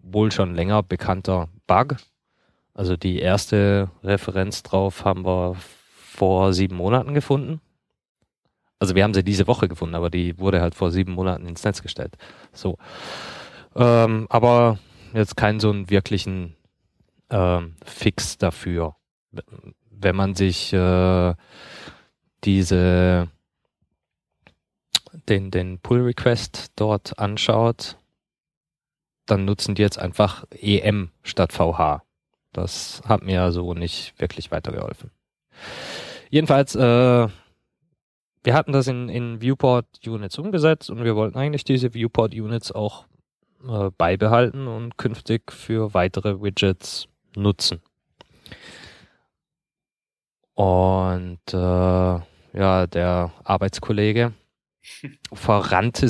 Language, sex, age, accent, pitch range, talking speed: German, male, 20-39, German, 90-115 Hz, 105 wpm